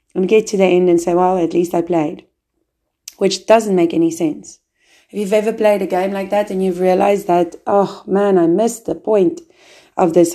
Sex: female